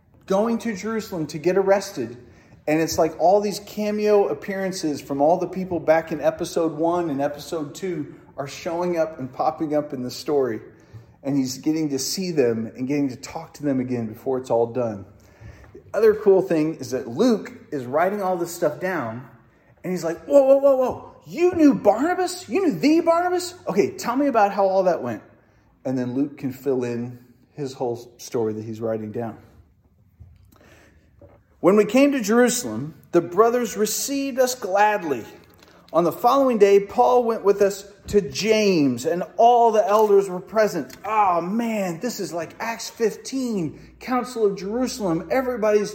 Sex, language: male, English